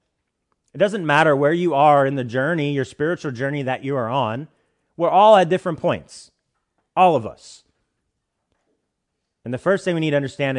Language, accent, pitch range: English, American, 115-155 Hz